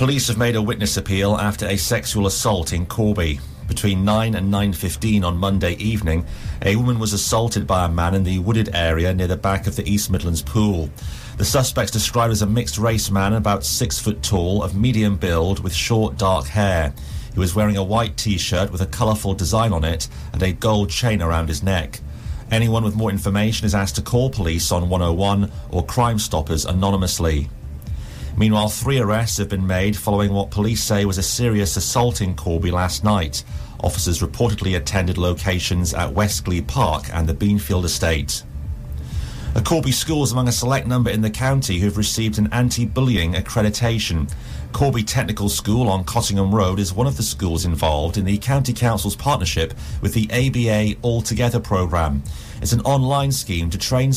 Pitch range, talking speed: 90-110 Hz, 185 wpm